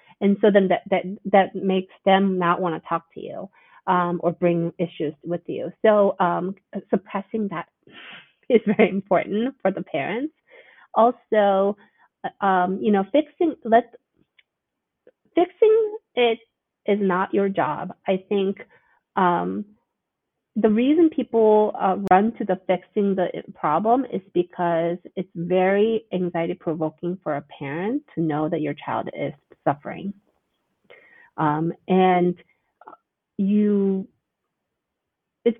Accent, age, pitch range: American, 30-49, 170-215 Hz